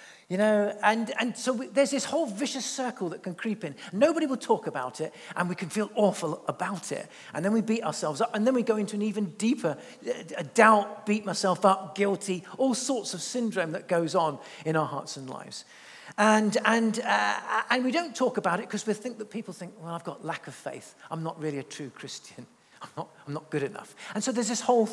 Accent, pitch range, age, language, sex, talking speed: British, 155-220 Hz, 40-59, English, male, 235 wpm